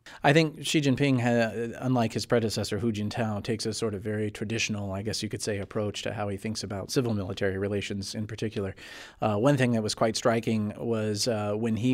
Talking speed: 205 wpm